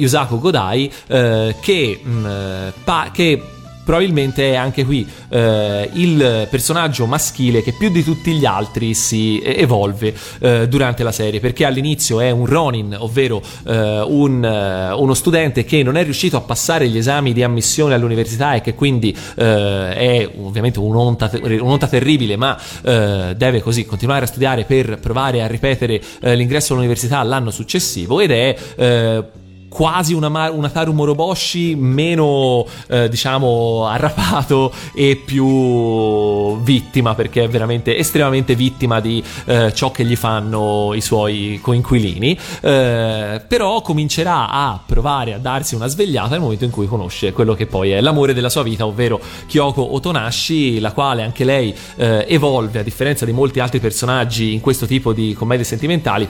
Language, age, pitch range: Italian, 30-49, 110-140 Hz